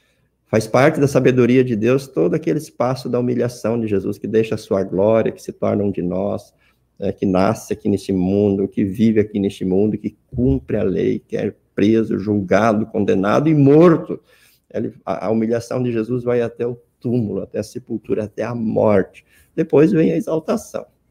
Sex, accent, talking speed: male, Brazilian, 180 wpm